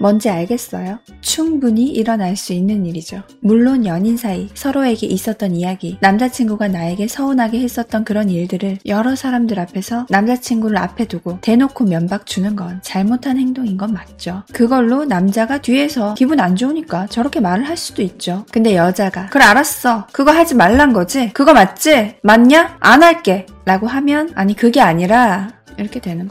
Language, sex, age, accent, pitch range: Korean, female, 20-39, native, 190-250 Hz